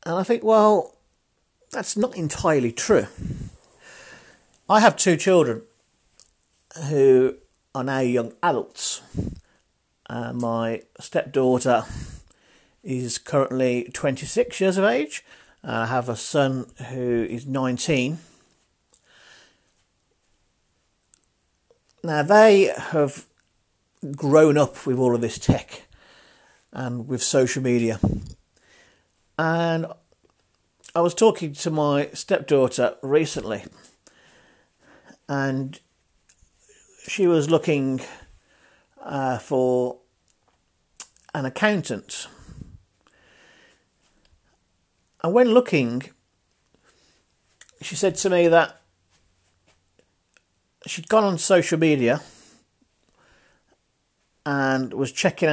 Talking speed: 85 wpm